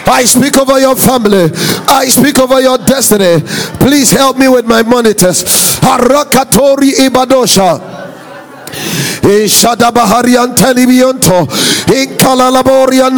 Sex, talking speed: male, 90 wpm